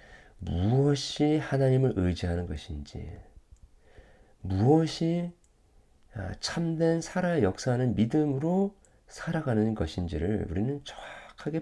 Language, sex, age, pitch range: Korean, male, 40-59, 80-110 Hz